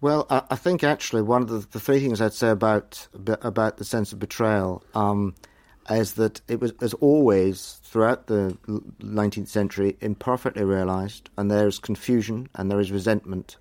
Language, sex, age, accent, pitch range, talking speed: English, male, 50-69, British, 100-120 Hz, 175 wpm